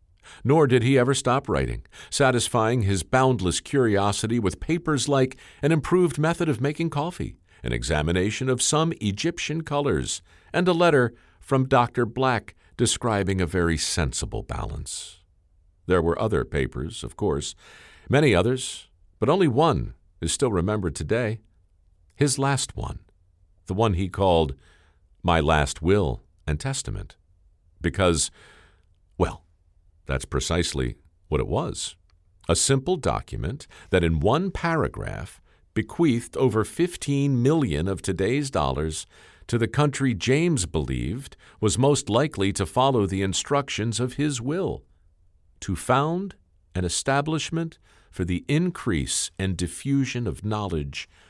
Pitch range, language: 85-130 Hz, English